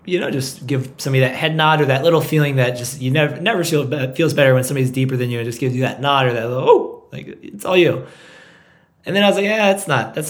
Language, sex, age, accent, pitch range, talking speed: English, male, 20-39, American, 125-150 Hz, 280 wpm